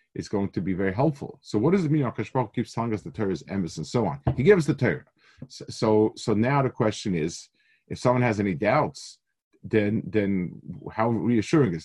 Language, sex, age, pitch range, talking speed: English, male, 50-69, 95-125 Hz, 215 wpm